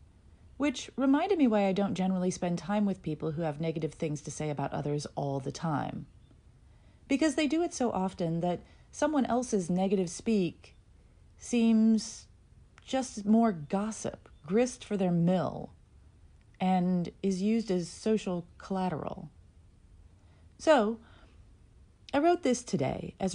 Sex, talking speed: female, 135 wpm